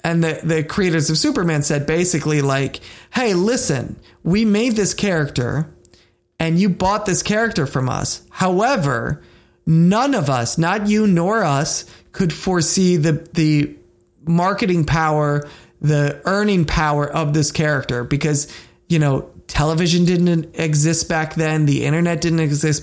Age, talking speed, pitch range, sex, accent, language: 20-39, 140 wpm, 145-170 Hz, male, American, English